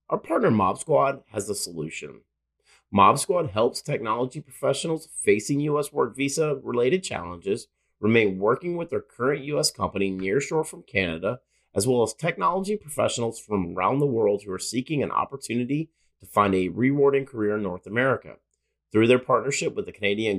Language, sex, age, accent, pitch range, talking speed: English, male, 30-49, American, 95-145 Hz, 160 wpm